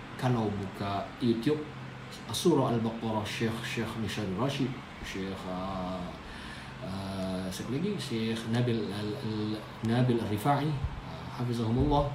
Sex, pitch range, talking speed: male, 110-140 Hz, 95 wpm